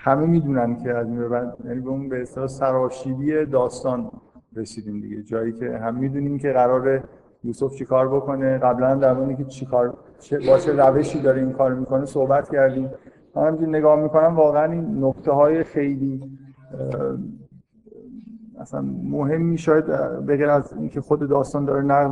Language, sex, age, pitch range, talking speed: Persian, male, 50-69, 130-155 Hz, 150 wpm